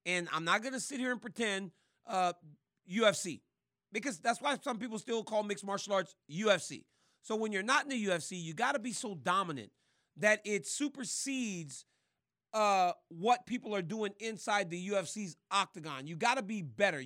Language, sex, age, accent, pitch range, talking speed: English, male, 40-59, American, 170-225 Hz, 170 wpm